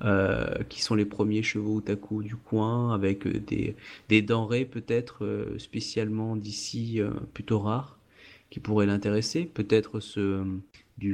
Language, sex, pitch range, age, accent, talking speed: French, male, 100-115 Hz, 30-49, French, 130 wpm